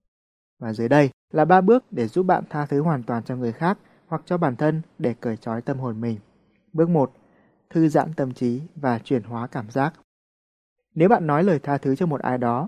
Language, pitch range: Vietnamese, 130-170 Hz